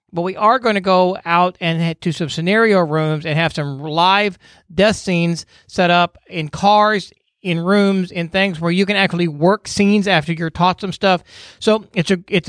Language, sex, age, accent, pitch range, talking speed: English, male, 40-59, American, 165-200 Hz, 190 wpm